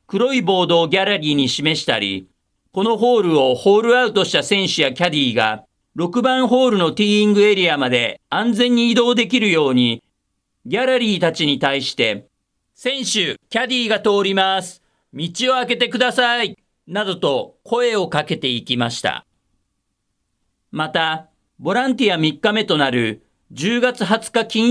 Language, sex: Japanese, male